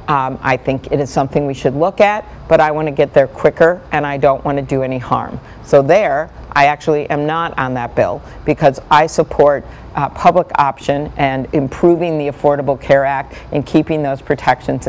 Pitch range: 140-170 Hz